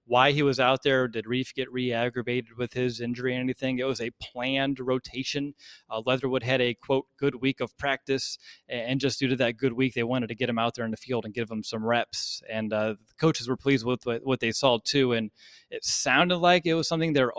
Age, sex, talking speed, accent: 20-39, male, 240 wpm, American